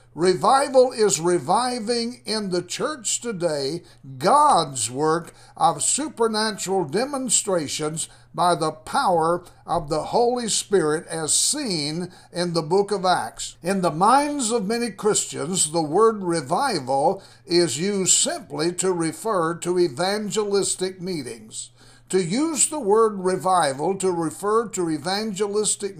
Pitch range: 170-215 Hz